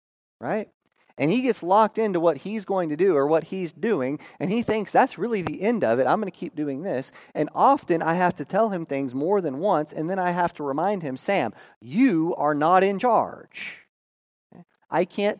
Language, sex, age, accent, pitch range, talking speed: English, male, 30-49, American, 135-190 Hz, 220 wpm